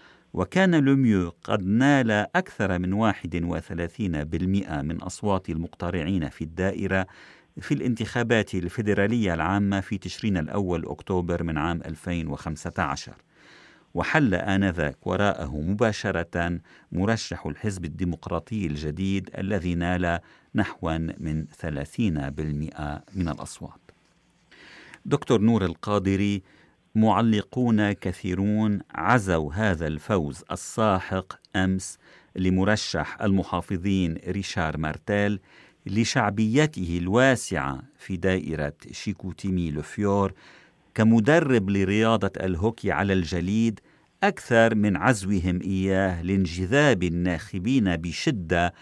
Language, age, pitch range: Arabic, 50-69, 85-105 Hz